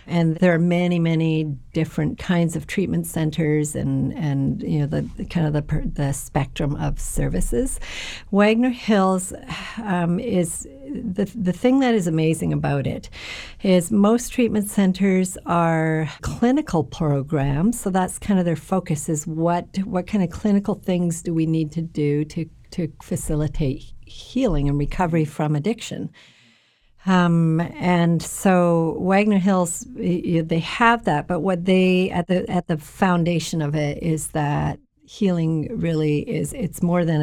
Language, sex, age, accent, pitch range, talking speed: English, female, 60-79, American, 150-185 Hz, 155 wpm